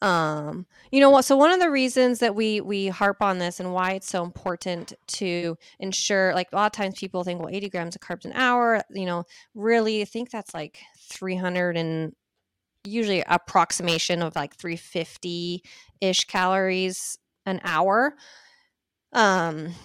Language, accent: English, American